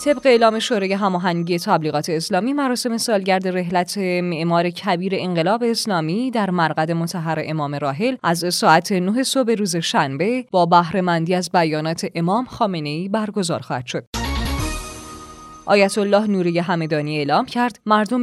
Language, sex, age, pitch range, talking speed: Persian, female, 20-39, 160-215 Hz, 130 wpm